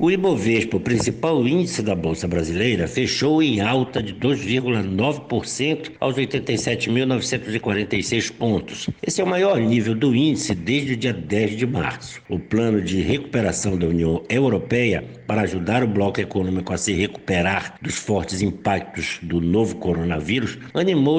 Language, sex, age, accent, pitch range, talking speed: Portuguese, male, 60-79, Brazilian, 95-135 Hz, 145 wpm